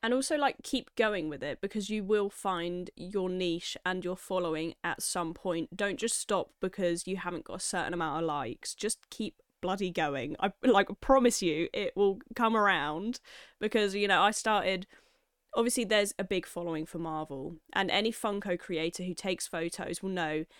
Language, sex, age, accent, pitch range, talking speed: English, female, 10-29, British, 165-210 Hz, 185 wpm